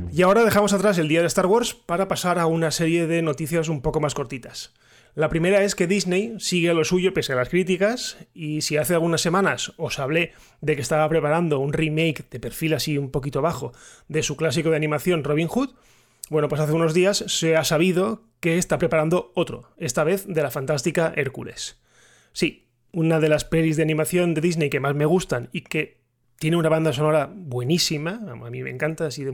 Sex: male